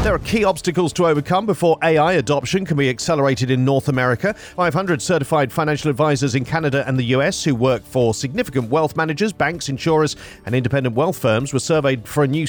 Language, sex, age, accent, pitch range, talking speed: English, male, 40-59, British, 130-175 Hz, 195 wpm